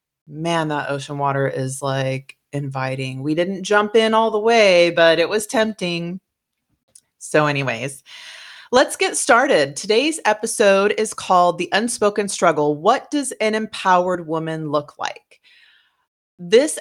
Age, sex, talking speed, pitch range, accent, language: 30-49, female, 135 wpm, 160-225 Hz, American, English